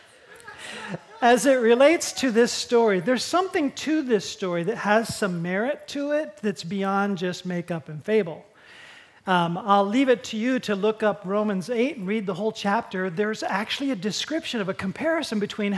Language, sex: English, male